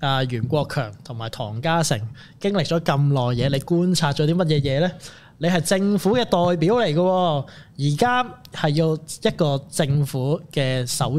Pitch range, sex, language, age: 140-180 Hz, male, Chinese, 20-39